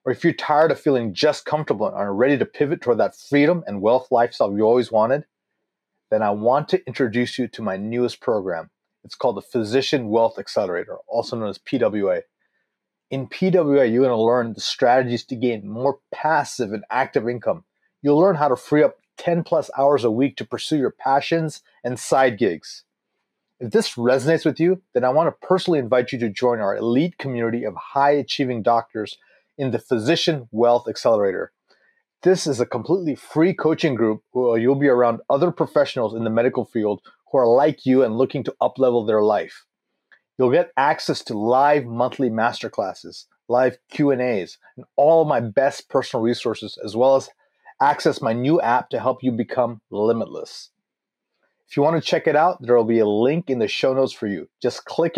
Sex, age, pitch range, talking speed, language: male, 30-49, 120-150 Hz, 190 wpm, English